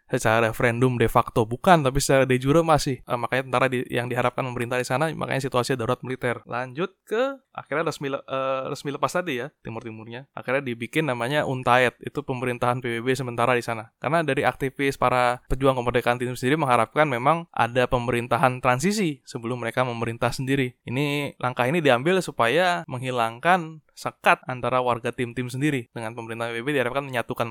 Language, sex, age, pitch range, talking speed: Indonesian, male, 20-39, 120-140 Hz, 170 wpm